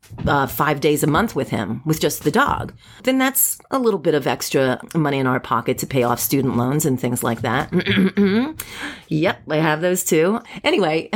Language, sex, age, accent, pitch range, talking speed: English, female, 30-49, American, 145-220 Hz, 200 wpm